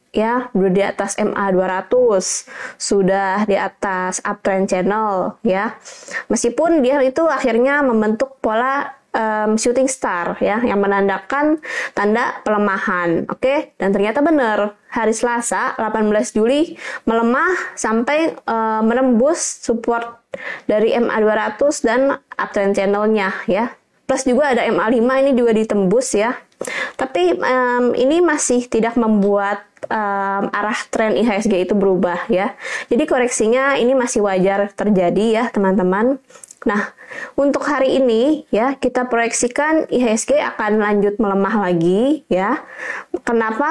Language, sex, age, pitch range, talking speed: Indonesian, female, 20-39, 205-260 Hz, 120 wpm